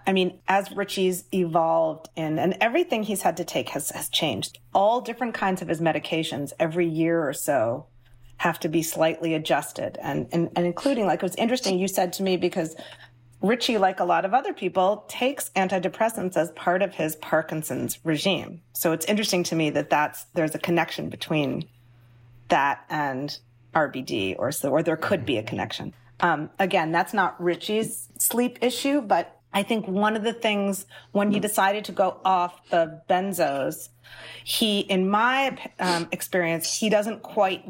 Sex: female